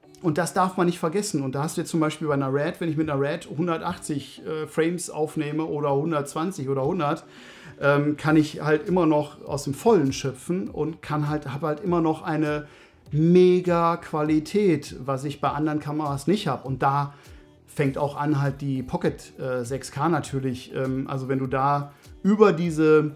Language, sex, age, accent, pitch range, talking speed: English, male, 50-69, German, 140-170 Hz, 190 wpm